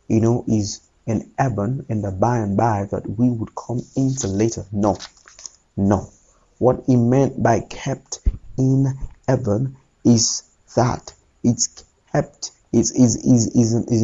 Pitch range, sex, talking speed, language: 110-135 Hz, male, 145 wpm, English